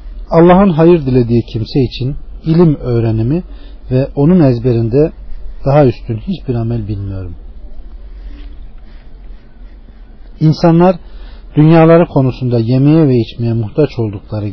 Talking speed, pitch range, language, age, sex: 95 wpm, 110-150 Hz, Turkish, 40-59, male